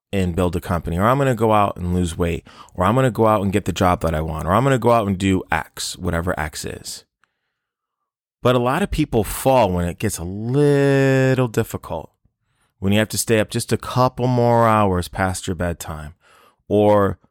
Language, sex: English, male